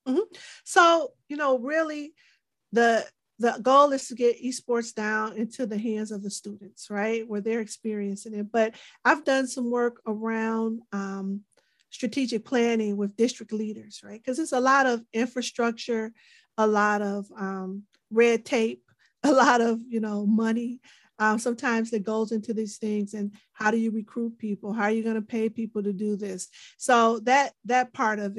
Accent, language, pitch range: American, English, 215-245 Hz